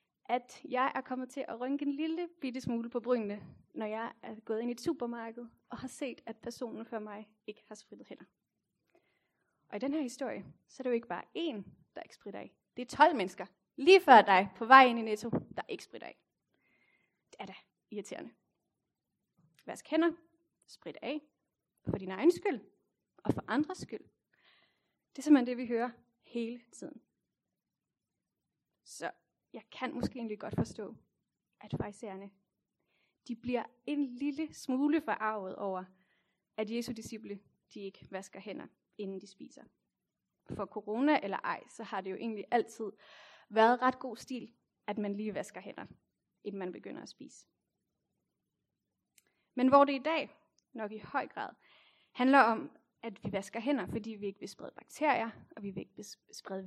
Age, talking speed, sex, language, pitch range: 30-49, 175 wpm, female, Danish, 210-270 Hz